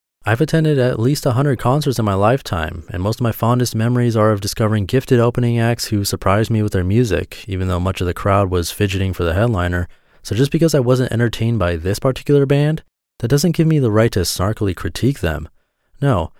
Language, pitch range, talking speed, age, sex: English, 95-120 Hz, 215 wpm, 30-49, male